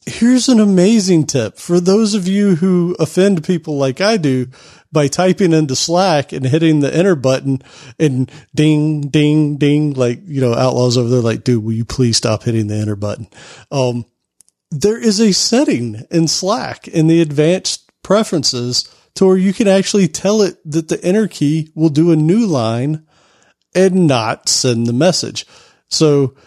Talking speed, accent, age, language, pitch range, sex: 170 wpm, American, 40-59, English, 130-170 Hz, male